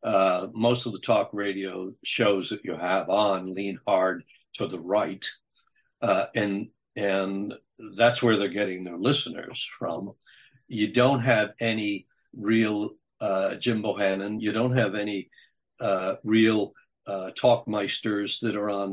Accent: American